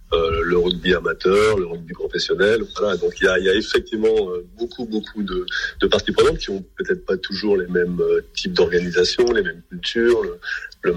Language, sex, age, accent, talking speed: French, male, 30-49, French, 190 wpm